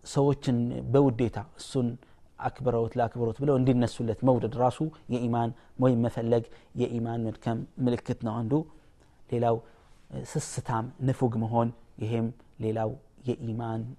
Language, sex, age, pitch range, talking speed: Amharic, male, 30-49, 110-130 Hz, 125 wpm